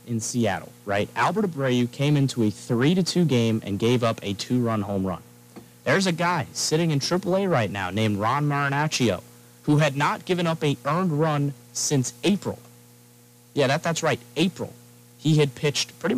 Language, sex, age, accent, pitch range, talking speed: English, male, 30-49, American, 100-145 Hz, 190 wpm